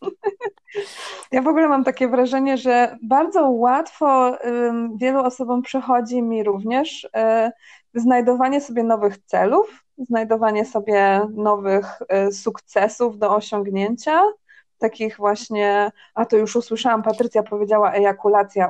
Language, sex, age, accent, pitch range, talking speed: Polish, female, 20-39, native, 205-255 Hz, 115 wpm